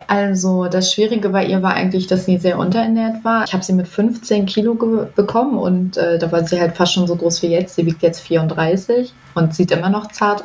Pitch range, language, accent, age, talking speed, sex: 180-205 Hz, German, German, 20-39, 235 wpm, female